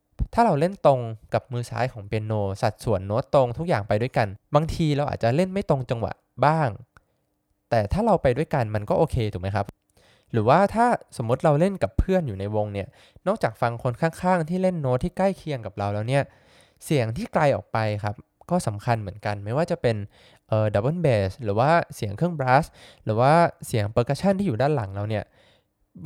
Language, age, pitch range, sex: Thai, 20-39, 110-150 Hz, male